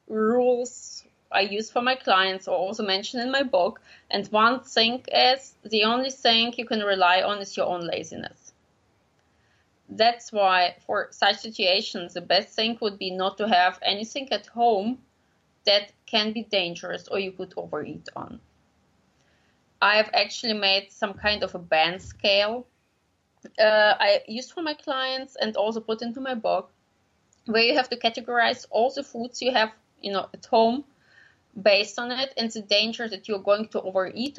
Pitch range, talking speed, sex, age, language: 195-245 Hz, 175 wpm, female, 20-39, English